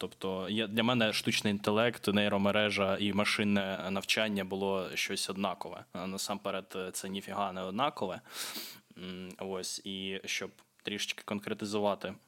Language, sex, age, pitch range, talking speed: Ukrainian, male, 20-39, 95-110 Hz, 110 wpm